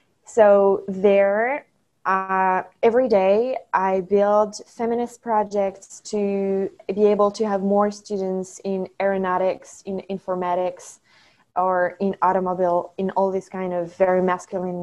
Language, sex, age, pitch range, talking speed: English, female, 20-39, 180-210 Hz, 120 wpm